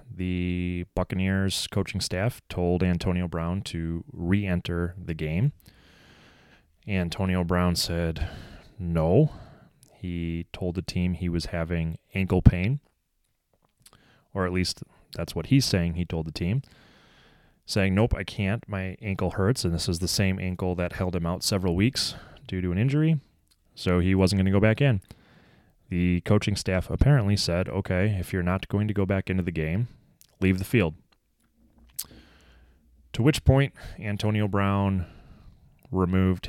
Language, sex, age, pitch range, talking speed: English, male, 20-39, 85-100 Hz, 150 wpm